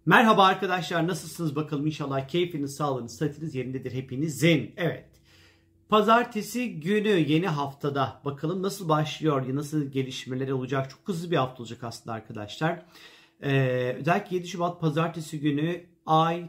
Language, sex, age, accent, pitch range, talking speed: Turkish, male, 40-59, native, 150-175 Hz, 130 wpm